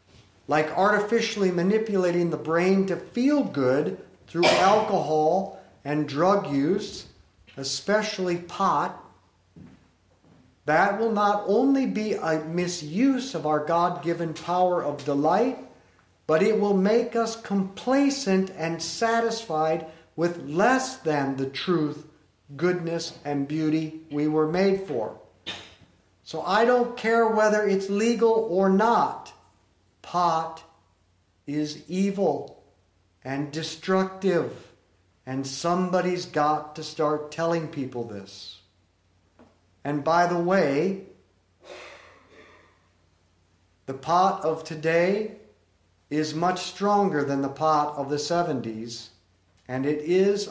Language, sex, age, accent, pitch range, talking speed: English, male, 50-69, American, 140-190 Hz, 105 wpm